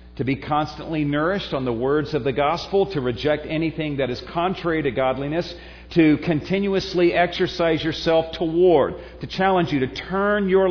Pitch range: 125-170 Hz